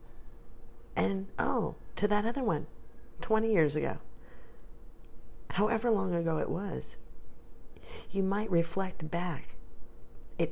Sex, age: female, 40-59